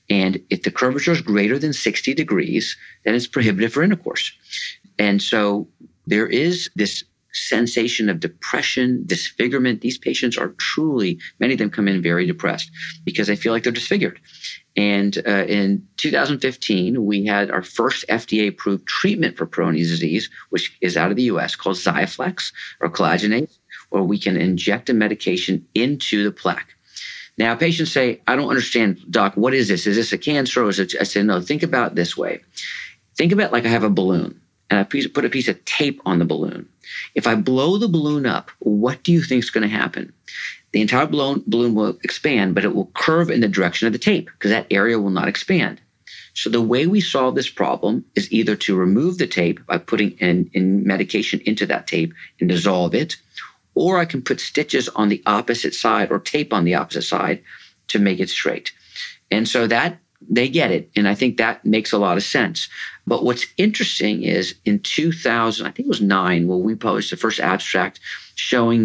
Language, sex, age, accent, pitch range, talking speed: English, male, 50-69, American, 100-125 Hz, 195 wpm